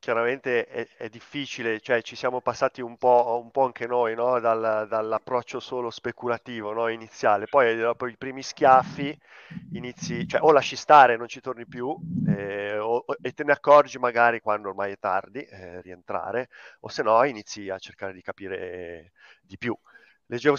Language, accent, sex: Italian, native, male